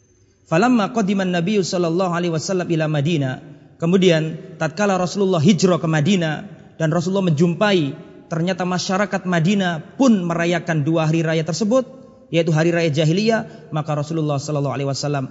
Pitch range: 140-180 Hz